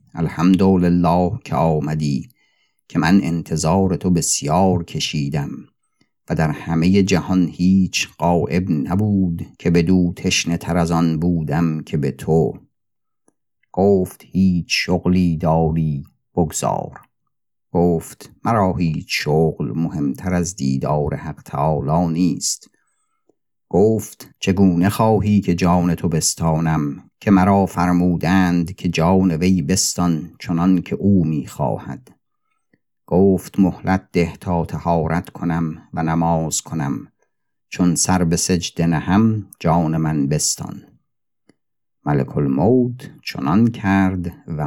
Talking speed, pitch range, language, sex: 110 wpm, 80-95 Hz, Persian, male